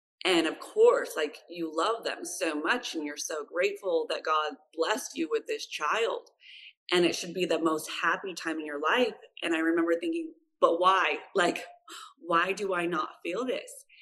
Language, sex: English, female